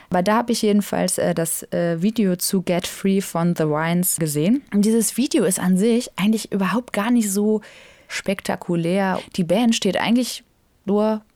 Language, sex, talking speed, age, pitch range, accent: German, female, 175 wpm, 20-39, 180-230 Hz, German